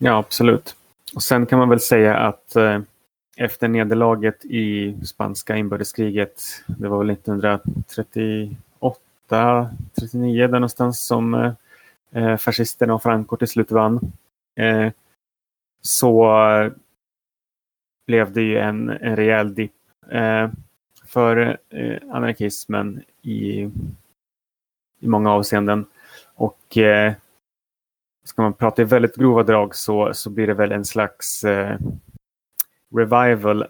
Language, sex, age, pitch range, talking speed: Swedish, male, 30-49, 105-115 Hz, 115 wpm